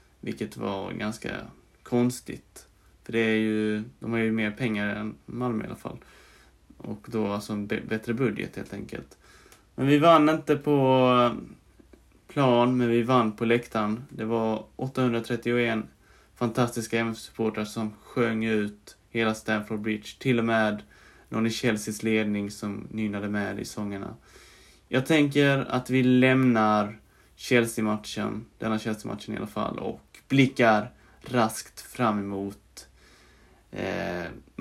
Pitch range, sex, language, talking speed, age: 105-120 Hz, male, Swedish, 135 wpm, 20-39